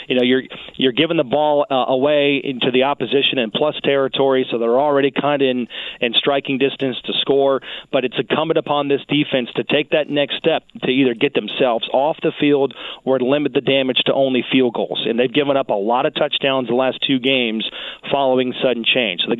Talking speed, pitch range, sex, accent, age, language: 215 wpm, 125-145 Hz, male, American, 40-59, English